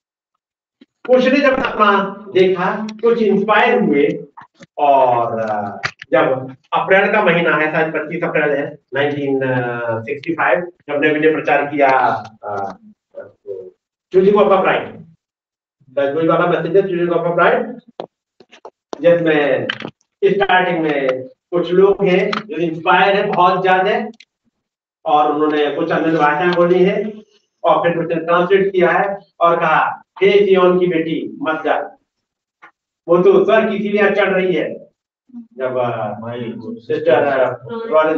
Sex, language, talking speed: male, Hindi, 85 wpm